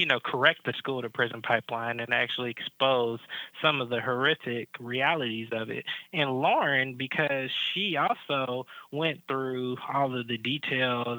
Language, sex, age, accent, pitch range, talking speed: English, male, 20-39, American, 120-150 Hz, 155 wpm